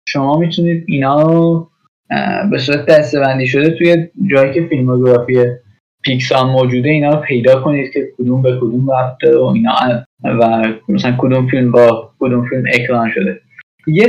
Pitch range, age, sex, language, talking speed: 130-170 Hz, 10-29, male, Persian, 150 wpm